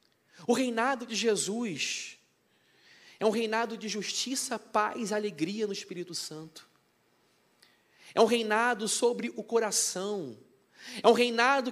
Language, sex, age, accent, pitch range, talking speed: Portuguese, male, 30-49, Brazilian, 215-255 Hz, 120 wpm